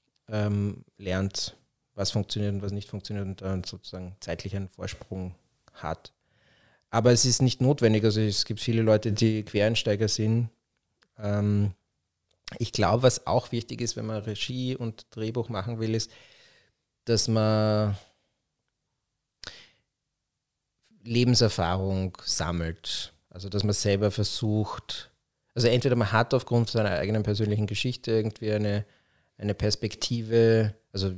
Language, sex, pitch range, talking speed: German, male, 100-115 Hz, 120 wpm